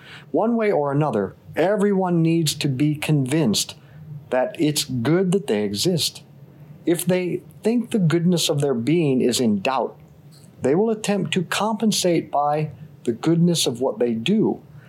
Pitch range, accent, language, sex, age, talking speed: 145-180 Hz, American, English, male, 50-69, 155 wpm